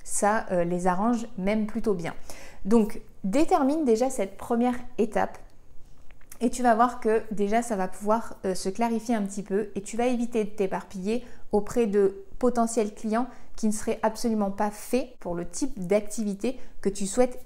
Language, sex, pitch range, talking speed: French, female, 195-235 Hz, 175 wpm